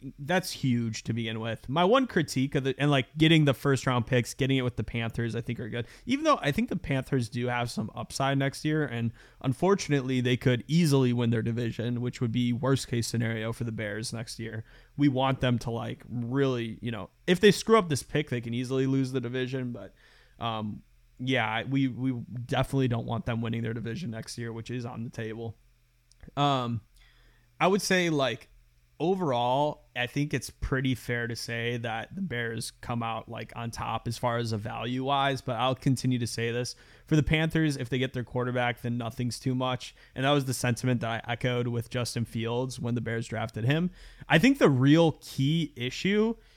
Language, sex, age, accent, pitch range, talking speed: English, male, 20-39, American, 115-140 Hz, 210 wpm